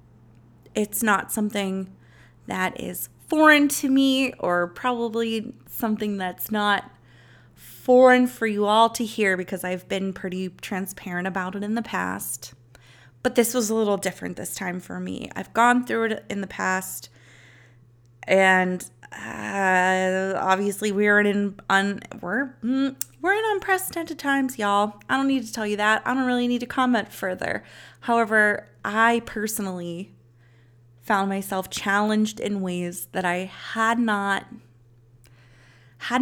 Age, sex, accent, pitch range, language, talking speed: 20-39, female, American, 170-220 Hz, English, 135 wpm